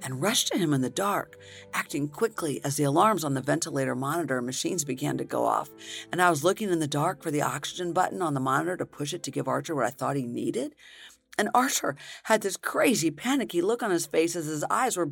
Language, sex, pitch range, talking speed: English, female, 175-265 Hz, 240 wpm